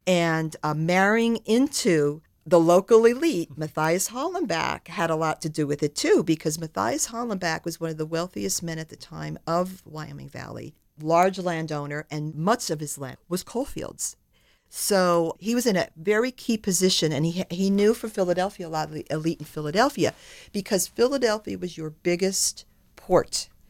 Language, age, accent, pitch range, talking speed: English, 50-69, American, 155-200 Hz, 170 wpm